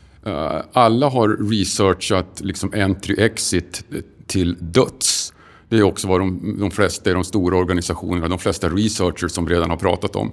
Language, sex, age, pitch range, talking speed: Swedish, male, 50-69, 90-110 Hz, 165 wpm